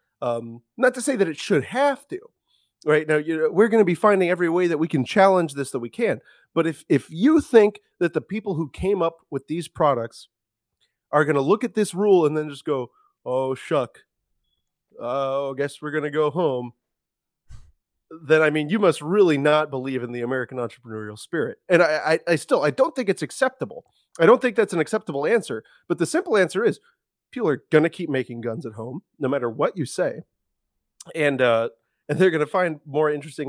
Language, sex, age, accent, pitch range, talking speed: English, male, 30-49, American, 135-185 Hz, 215 wpm